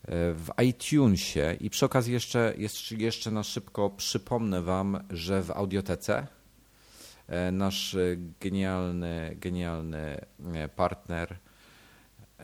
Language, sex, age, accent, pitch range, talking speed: Polish, male, 40-59, native, 85-105 Hz, 85 wpm